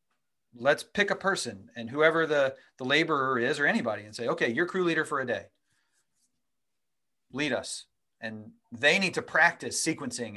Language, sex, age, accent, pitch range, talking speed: English, male, 30-49, American, 115-155 Hz, 170 wpm